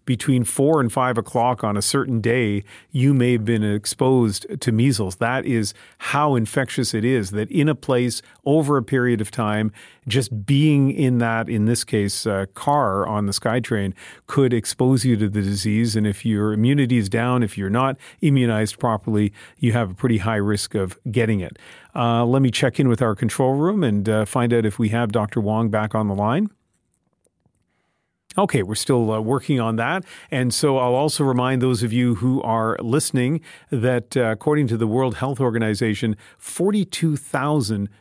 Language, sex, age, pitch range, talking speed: English, male, 40-59, 110-135 Hz, 185 wpm